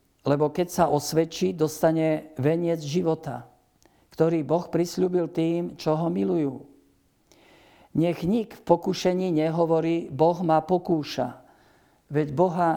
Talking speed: 115 wpm